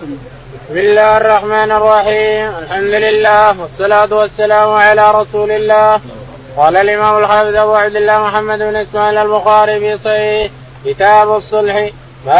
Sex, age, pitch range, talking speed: male, 20-39, 205-210 Hz, 120 wpm